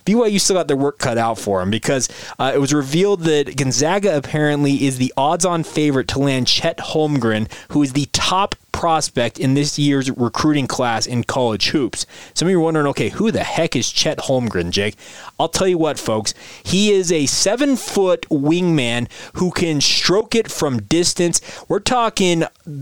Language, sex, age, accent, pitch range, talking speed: English, male, 20-39, American, 130-170 Hz, 180 wpm